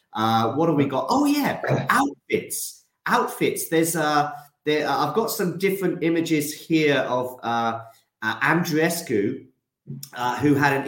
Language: English